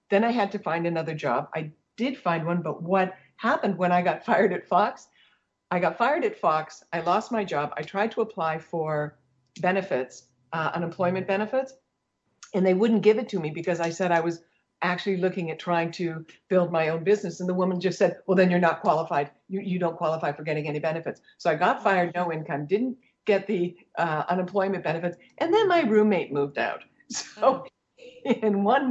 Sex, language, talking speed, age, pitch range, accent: female, English, 205 wpm, 50-69, 160-195 Hz, American